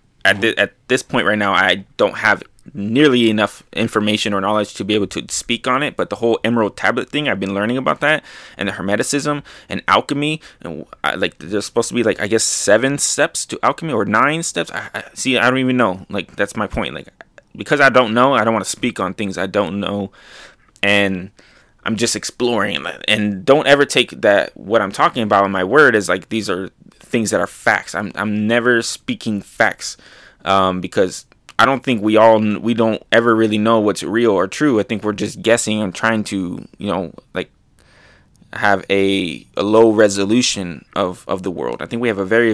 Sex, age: male, 20-39